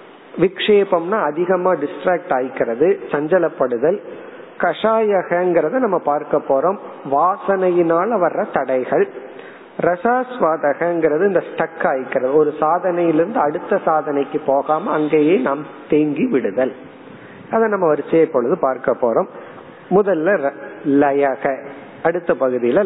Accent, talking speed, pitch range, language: native, 50 wpm, 135-180 Hz, Tamil